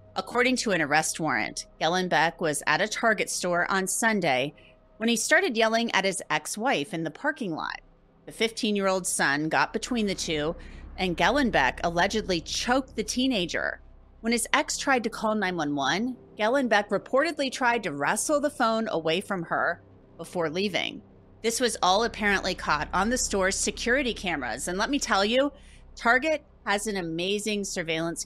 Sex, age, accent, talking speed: female, 30-49, American, 160 wpm